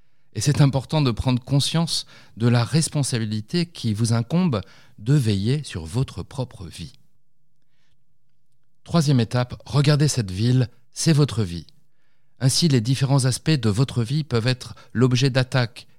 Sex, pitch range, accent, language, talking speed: male, 105-135 Hz, French, French, 140 wpm